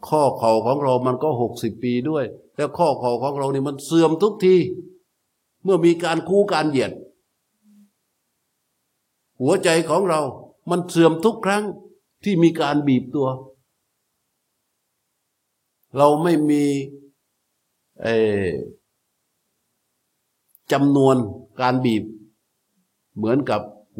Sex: male